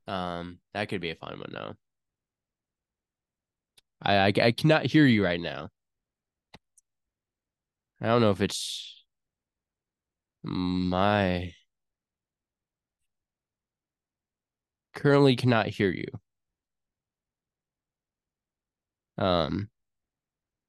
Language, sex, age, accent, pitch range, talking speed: English, male, 20-39, American, 90-120 Hz, 80 wpm